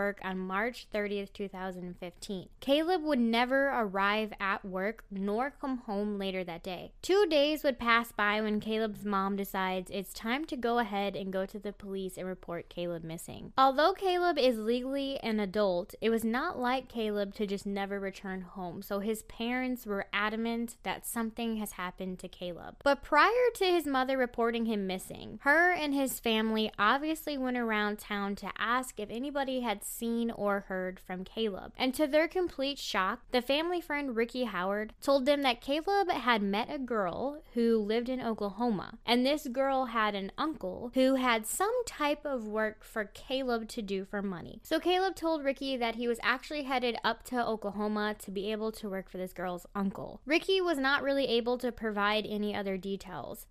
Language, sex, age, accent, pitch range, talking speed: English, female, 10-29, American, 200-260 Hz, 185 wpm